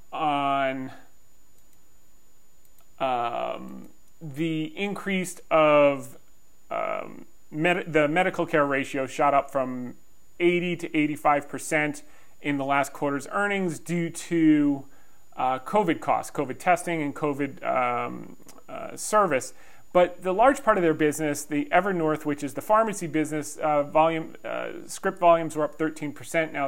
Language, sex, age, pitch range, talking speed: English, male, 40-59, 140-175 Hz, 135 wpm